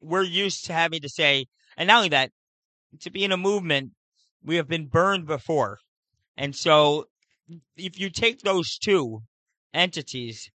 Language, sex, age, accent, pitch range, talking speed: English, male, 40-59, American, 145-190 Hz, 160 wpm